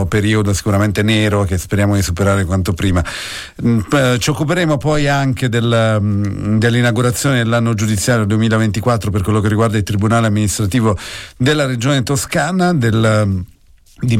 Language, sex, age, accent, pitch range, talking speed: Italian, male, 50-69, native, 105-125 Hz, 125 wpm